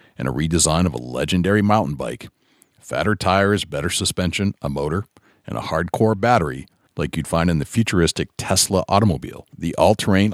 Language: English